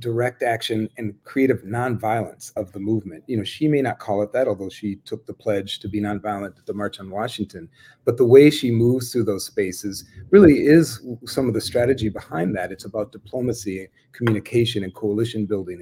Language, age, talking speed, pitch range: English, 40-59, 195 wpm, 105-125 Hz